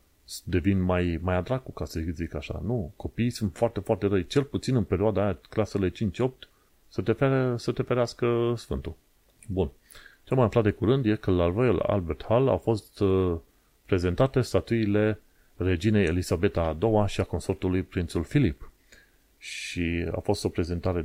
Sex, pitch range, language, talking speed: male, 85-110 Hz, Romanian, 165 wpm